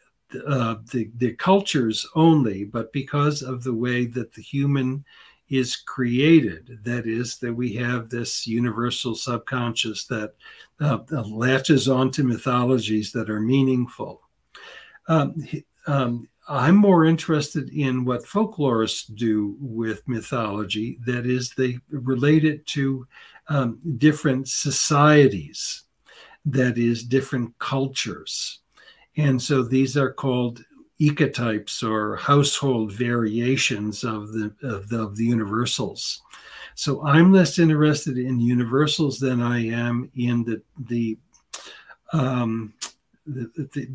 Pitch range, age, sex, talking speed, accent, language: 120-145 Hz, 60-79, male, 115 wpm, American, English